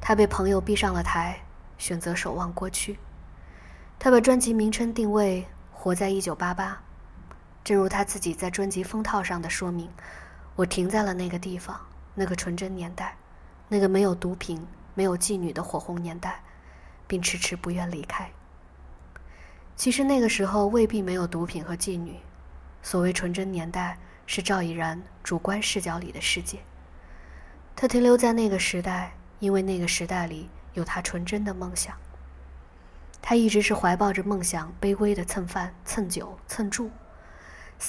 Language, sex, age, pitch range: Chinese, female, 20-39, 170-205 Hz